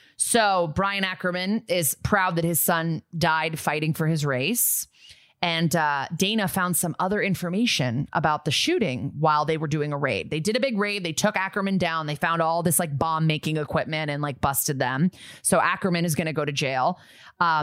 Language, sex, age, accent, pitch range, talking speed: English, female, 20-39, American, 150-205 Hz, 200 wpm